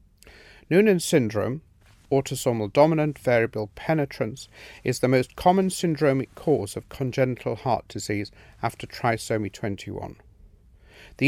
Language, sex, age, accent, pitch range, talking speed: English, male, 50-69, British, 105-140 Hz, 105 wpm